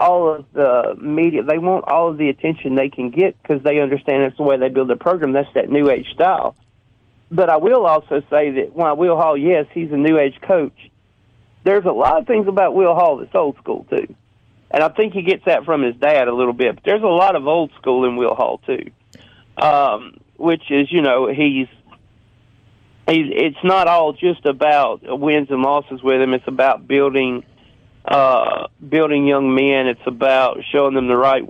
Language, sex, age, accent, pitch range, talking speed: English, male, 50-69, American, 130-155 Hz, 210 wpm